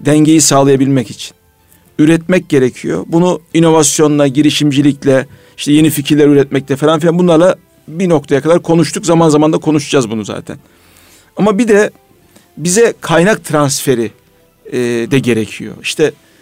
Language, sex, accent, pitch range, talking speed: Turkish, male, native, 125-155 Hz, 130 wpm